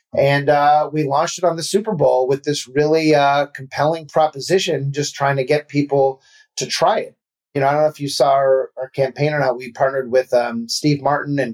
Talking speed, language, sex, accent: 225 wpm, English, male, American